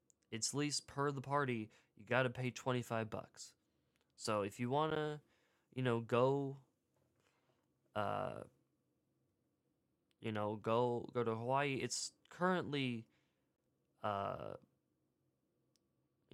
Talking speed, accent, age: 105 wpm, American, 10-29